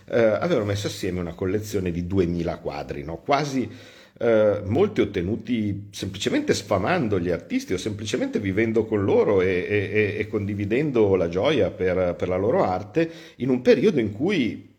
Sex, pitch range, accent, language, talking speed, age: male, 90-110 Hz, native, Italian, 160 wpm, 50-69